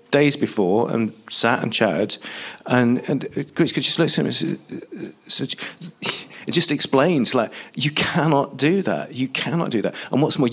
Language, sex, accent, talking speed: English, male, British, 165 wpm